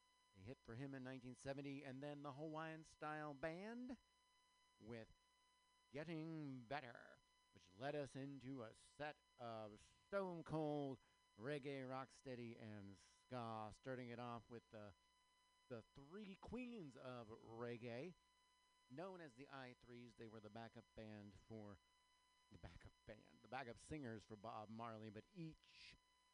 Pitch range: 115-170 Hz